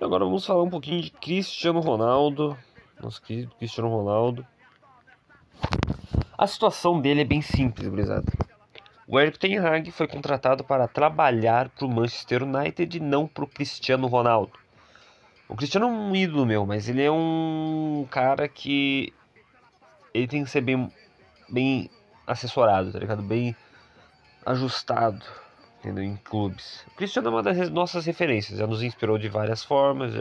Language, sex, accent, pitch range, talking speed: Portuguese, male, Brazilian, 115-155 Hz, 145 wpm